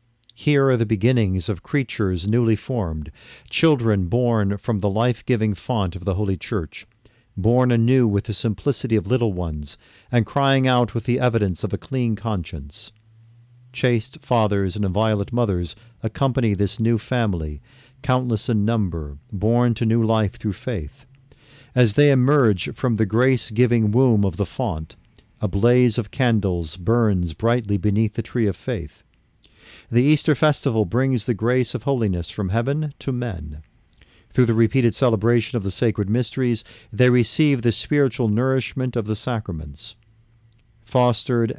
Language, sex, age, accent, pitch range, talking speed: English, male, 50-69, American, 105-125 Hz, 150 wpm